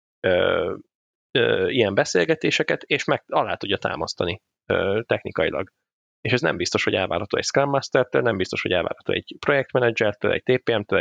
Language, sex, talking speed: Hungarian, male, 160 wpm